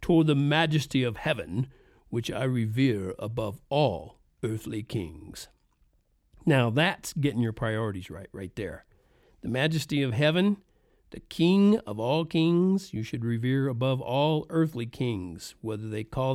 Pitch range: 115-150 Hz